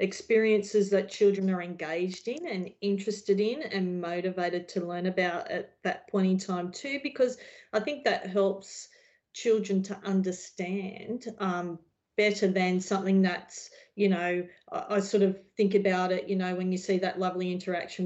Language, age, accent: English, 40-59, Australian